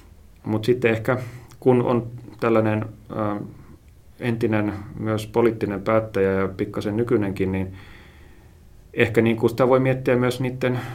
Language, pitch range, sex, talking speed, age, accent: Finnish, 95-115 Hz, male, 110 wpm, 30-49, native